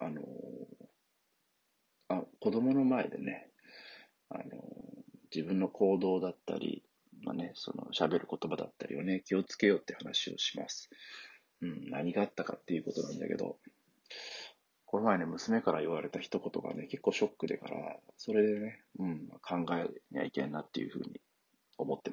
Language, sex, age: Japanese, male, 40-59